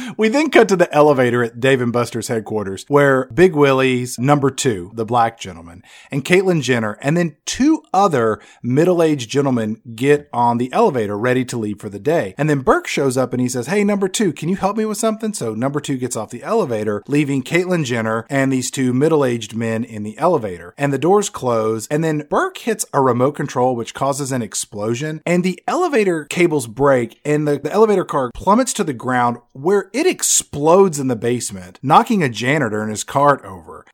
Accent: American